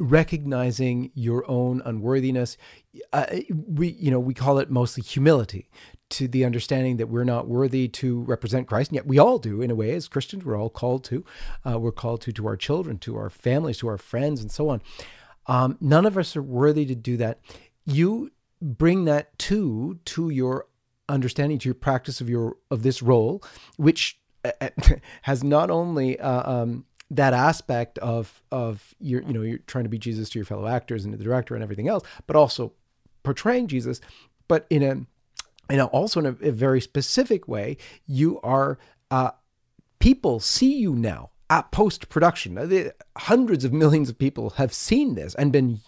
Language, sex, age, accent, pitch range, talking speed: English, male, 40-59, American, 120-150 Hz, 190 wpm